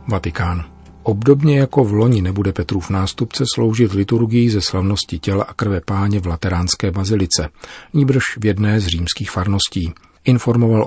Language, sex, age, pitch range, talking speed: Czech, male, 40-59, 90-105 Hz, 145 wpm